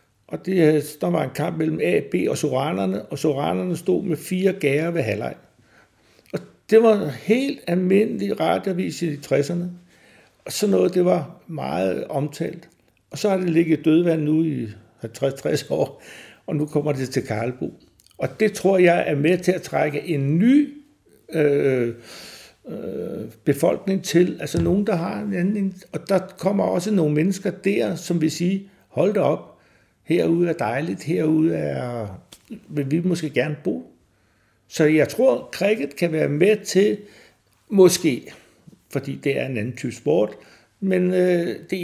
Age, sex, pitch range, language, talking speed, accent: 60-79, male, 140-185 Hz, Danish, 160 wpm, native